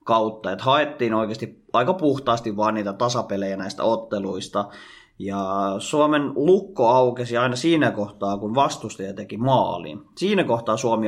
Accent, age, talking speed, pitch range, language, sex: native, 30-49, 135 wpm, 100-125 Hz, Finnish, male